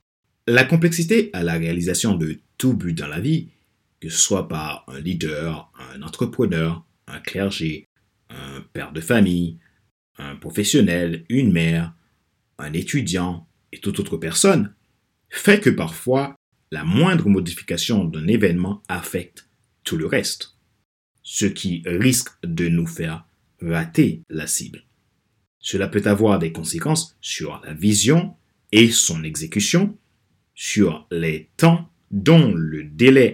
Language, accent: French, French